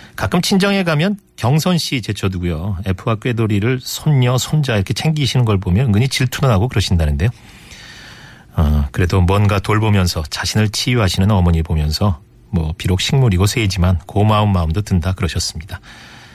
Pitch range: 95-135 Hz